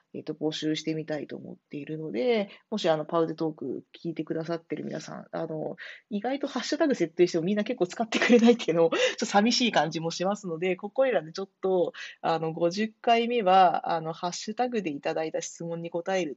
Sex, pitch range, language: female, 160-210 Hz, Japanese